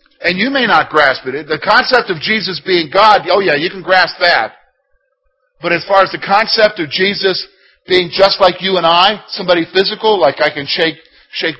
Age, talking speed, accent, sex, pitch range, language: 50-69, 200 wpm, American, male, 185-275 Hz, English